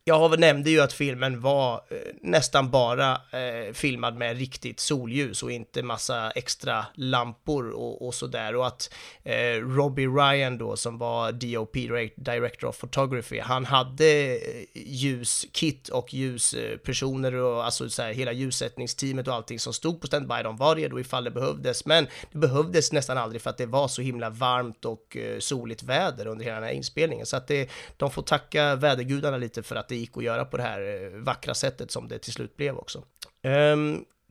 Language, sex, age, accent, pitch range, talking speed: Swedish, male, 30-49, native, 120-145 Hz, 185 wpm